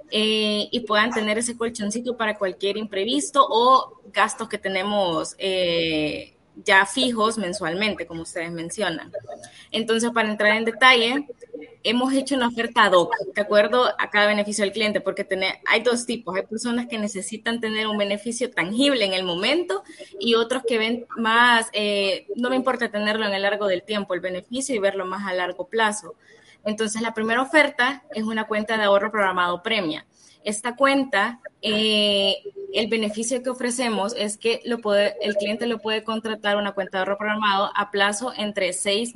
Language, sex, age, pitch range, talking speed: Spanish, female, 20-39, 195-230 Hz, 175 wpm